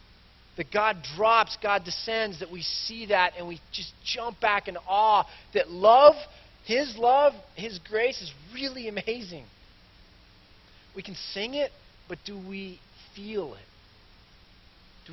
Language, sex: English, male